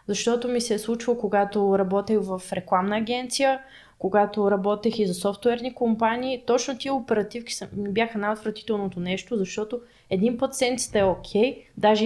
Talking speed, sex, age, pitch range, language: 145 wpm, female, 20-39, 200-245 Hz, Bulgarian